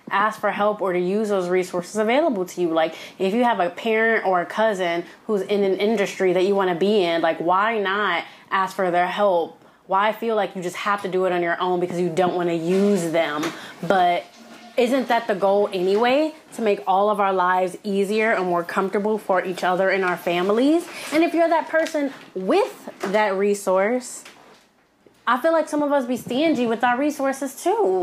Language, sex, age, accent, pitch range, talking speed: English, female, 20-39, American, 185-230 Hz, 210 wpm